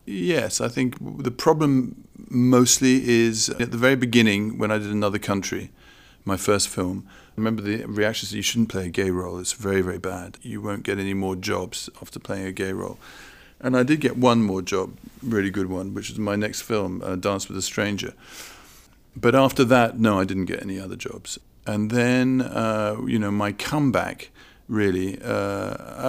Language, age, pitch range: English, 40-59, 100-115 Hz